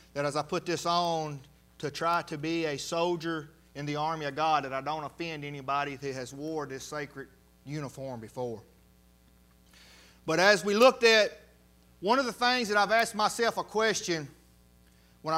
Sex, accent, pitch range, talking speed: male, American, 155-230 Hz, 175 wpm